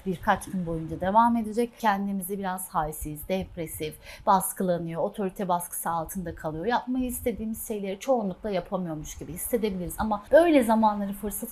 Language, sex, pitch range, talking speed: Turkish, female, 170-215 Hz, 130 wpm